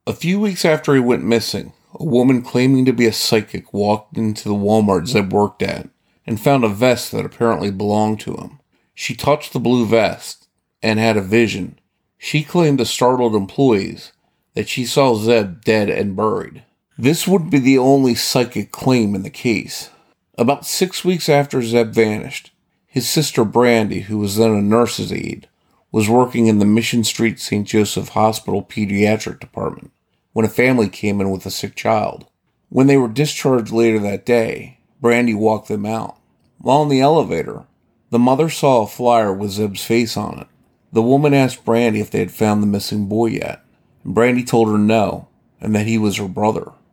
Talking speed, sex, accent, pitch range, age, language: 185 wpm, male, American, 105-130 Hz, 40-59, English